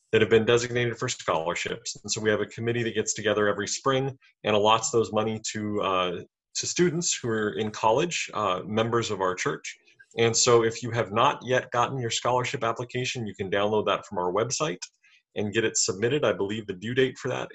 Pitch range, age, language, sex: 110-135 Hz, 30-49, English, male